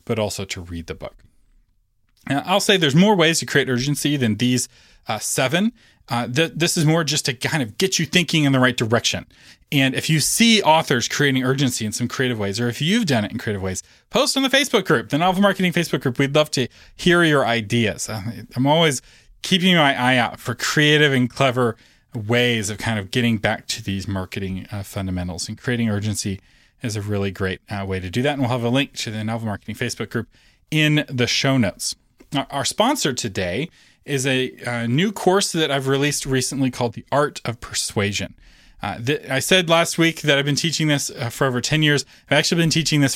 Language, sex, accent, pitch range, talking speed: English, male, American, 110-150 Hz, 215 wpm